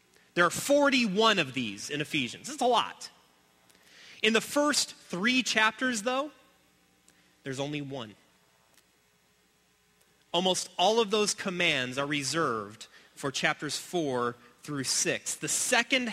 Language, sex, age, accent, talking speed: English, male, 30-49, American, 125 wpm